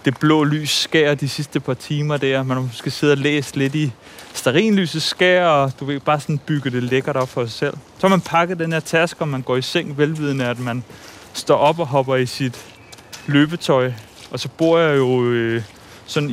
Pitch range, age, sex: 125-155 Hz, 30-49, male